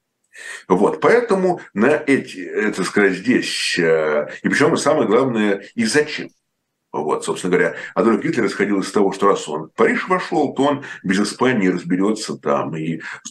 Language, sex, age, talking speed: Russian, male, 50-69, 160 wpm